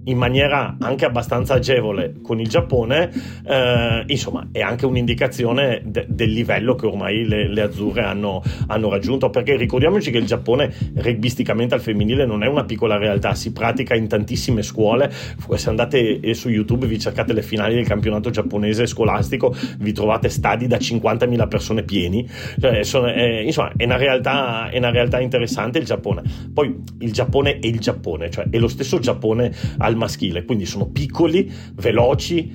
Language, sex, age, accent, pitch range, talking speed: Italian, male, 40-59, native, 105-125 Hz, 165 wpm